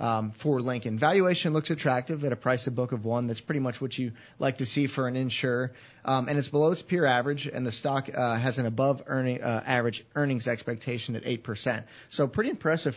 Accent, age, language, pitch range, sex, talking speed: American, 30-49, English, 120-145 Hz, male, 225 wpm